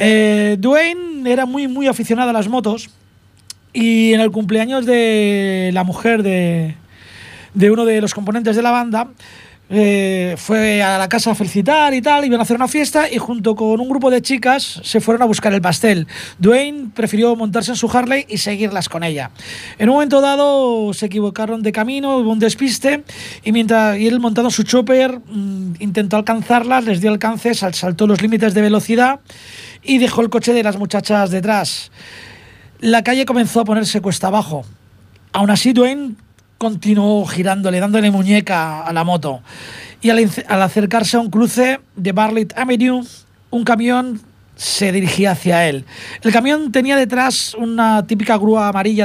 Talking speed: 175 wpm